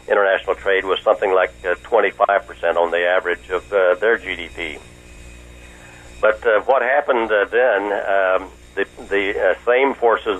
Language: English